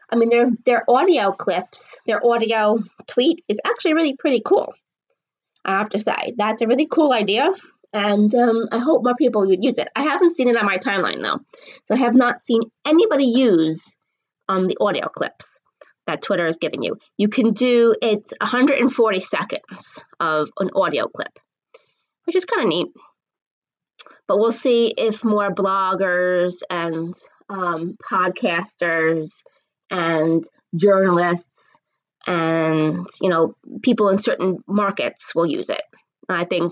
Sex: female